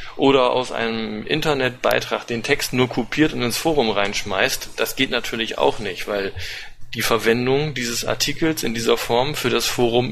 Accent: German